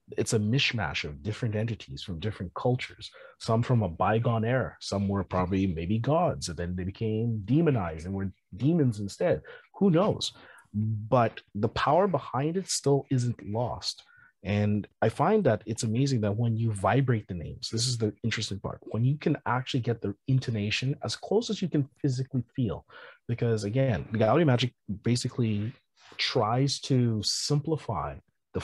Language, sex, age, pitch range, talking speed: English, male, 30-49, 105-135 Hz, 165 wpm